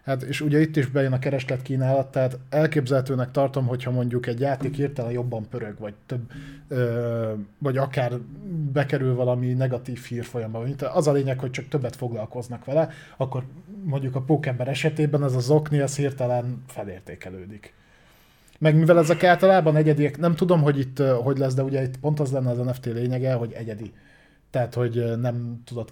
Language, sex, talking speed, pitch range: Hungarian, male, 165 wpm, 125-145 Hz